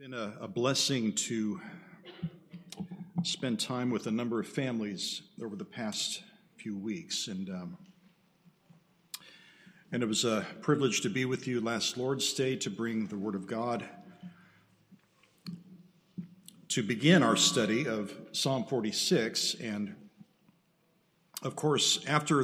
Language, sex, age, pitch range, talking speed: English, male, 50-69, 120-180 Hz, 130 wpm